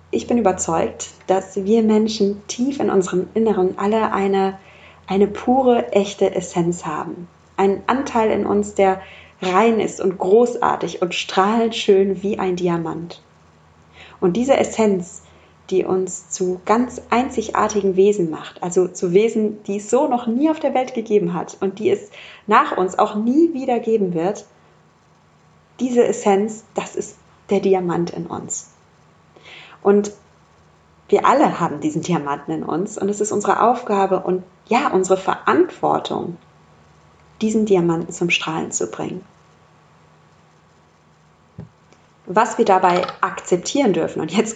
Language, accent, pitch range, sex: German, German, 185-220 Hz, female